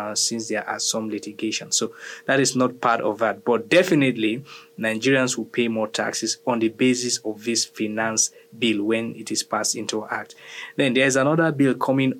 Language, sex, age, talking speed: English, male, 20-39, 190 wpm